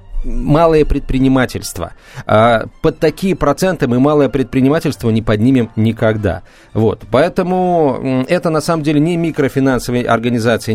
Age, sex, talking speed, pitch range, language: 40-59, male, 110 wpm, 110-145 Hz, Russian